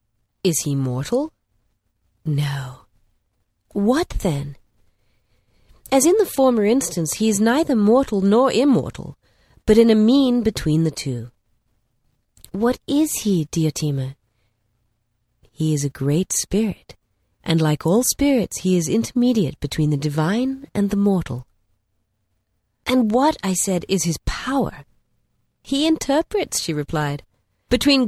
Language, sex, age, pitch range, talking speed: English, female, 30-49, 130-215 Hz, 125 wpm